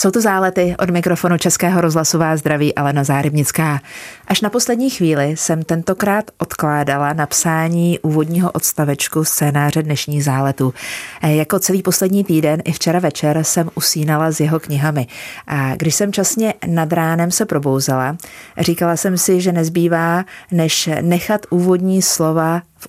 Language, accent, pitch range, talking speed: Czech, native, 150-180 Hz, 140 wpm